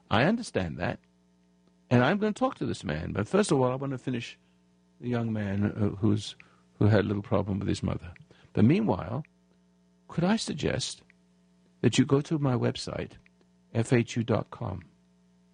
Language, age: English, 60-79